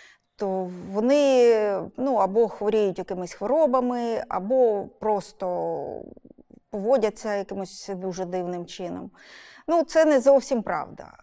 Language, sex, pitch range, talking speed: Ukrainian, female, 195-265 Hz, 100 wpm